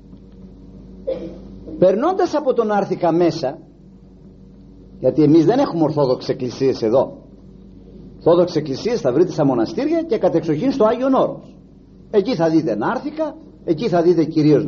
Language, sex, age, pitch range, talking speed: Greek, male, 50-69, 170-260 Hz, 125 wpm